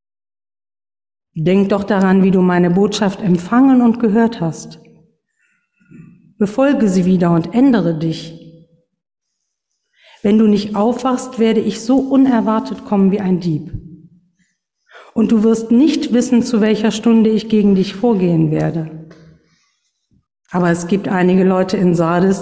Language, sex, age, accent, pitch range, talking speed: German, female, 50-69, German, 170-220 Hz, 130 wpm